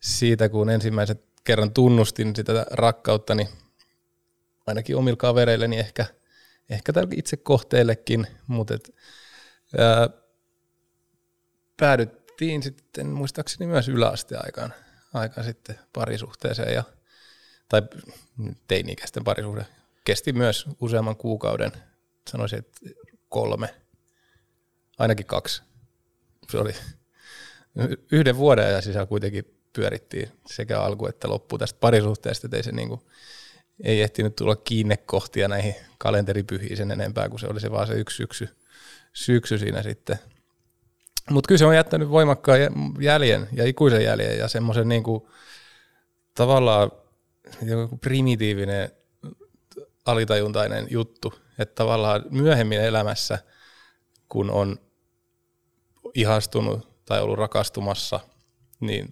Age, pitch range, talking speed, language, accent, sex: 20-39, 105-125 Hz, 105 wpm, Finnish, native, male